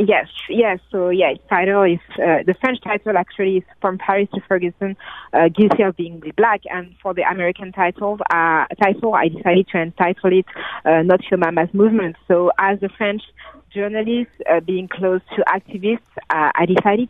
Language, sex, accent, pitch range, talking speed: English, female, French, 180-215 Hz, 175 wpm